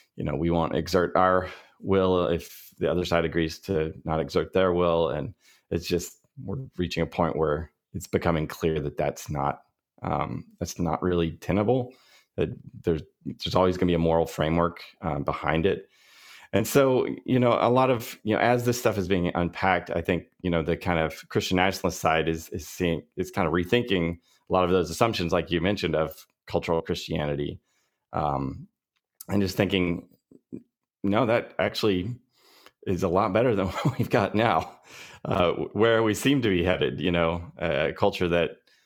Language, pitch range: English, 85-95 Hz